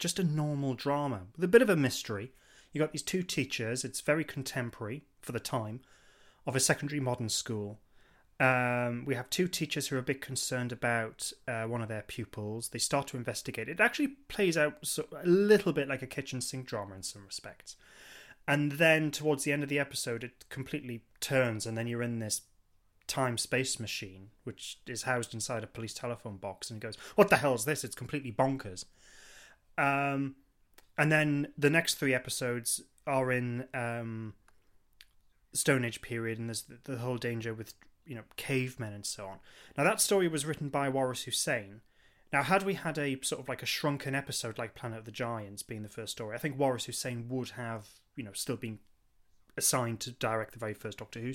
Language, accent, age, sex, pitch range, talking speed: English, British, 20-39, male, 115-145 Hz, 200 wpm